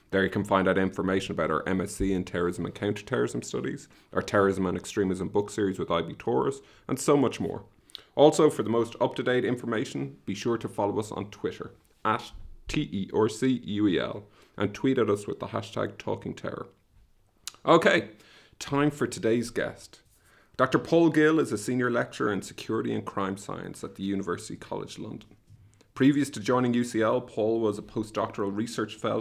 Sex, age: male, 30-49